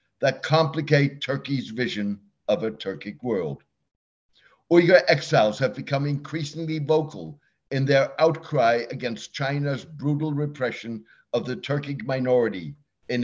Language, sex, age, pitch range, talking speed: English, male, 60-79, 120-155 Hz, 120 wpm